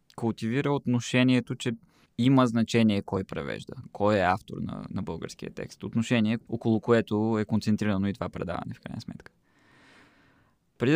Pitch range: 100-125 Hz